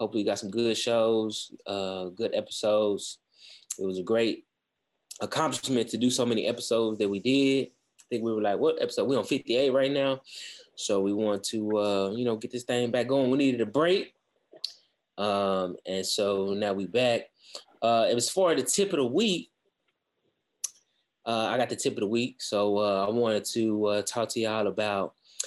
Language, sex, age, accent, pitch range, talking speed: English, male, 20-39, American, 100-125 Hz, 195 wpm